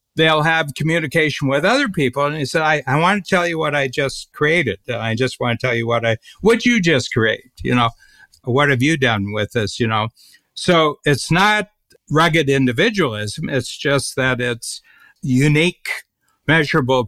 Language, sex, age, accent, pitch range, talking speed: English, male, 60-79, American, 120-155 Hz, 180 wpm